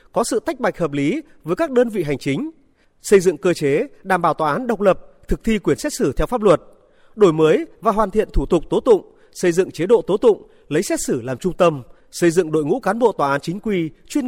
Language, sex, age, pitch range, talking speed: Vietnamese, male, 30-49, 170-275 Hz, 260 wpm